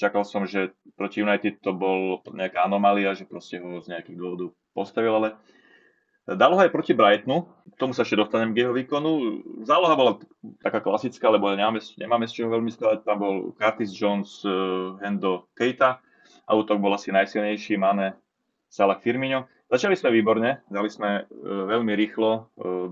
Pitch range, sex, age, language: 100-115 Hz, male, 20-39, Slovak